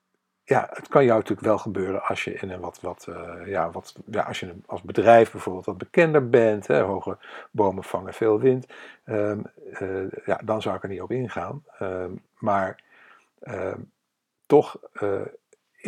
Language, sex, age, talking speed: Dutch, male, 50-69, 135 wpm